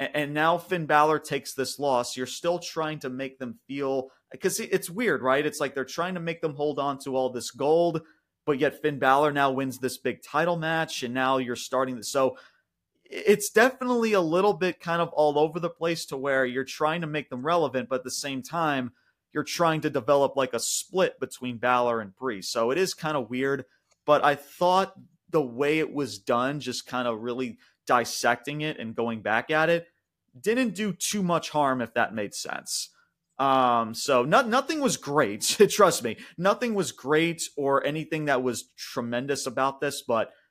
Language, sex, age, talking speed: English, male, 30-49, 200 wpm